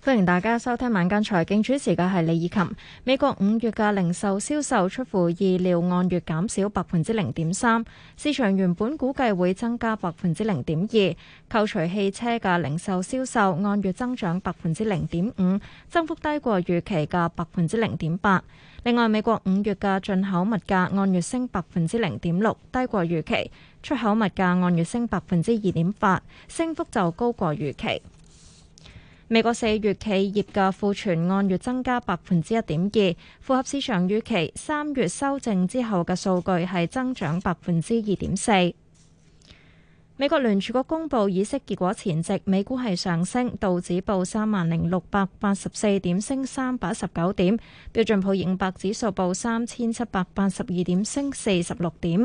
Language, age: Chinese, 20-39